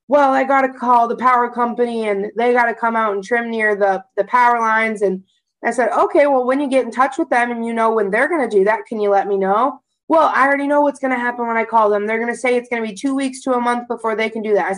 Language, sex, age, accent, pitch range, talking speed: English, female, 20-39, American, 215-270 Hz, 315 wpm